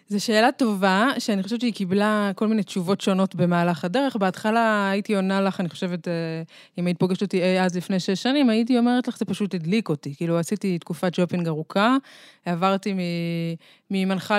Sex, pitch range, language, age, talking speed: female, 170-205 Hz, Hebrew, 20-39, 170 wpm